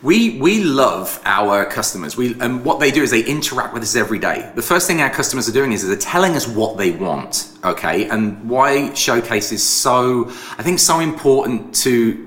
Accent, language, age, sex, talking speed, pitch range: British, English, 30-49, male, 210 wpm, 115-160 Hz